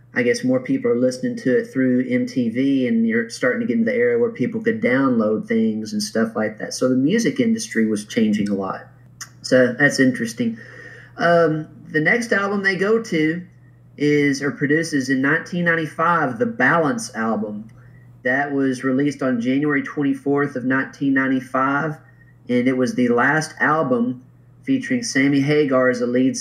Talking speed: 165 wpm